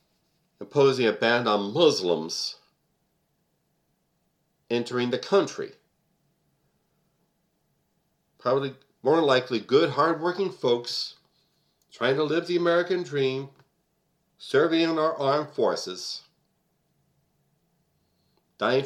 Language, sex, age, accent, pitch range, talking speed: English, male, 60-79, American, 105-165 Hz, 85 wpm